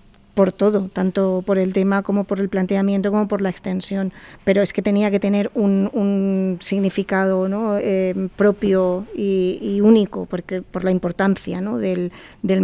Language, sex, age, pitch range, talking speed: Spanish, female, 40-59, 190-205 Hz, 155 wpm